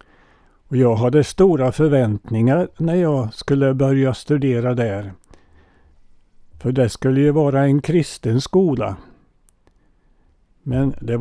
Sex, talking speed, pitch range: male, 110 wpm, 115-145 Hz